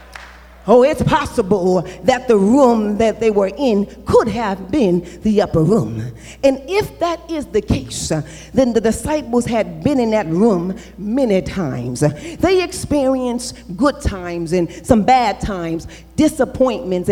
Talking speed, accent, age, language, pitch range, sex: 145 wpm, American, 40-59, English, 170-250 Hz, female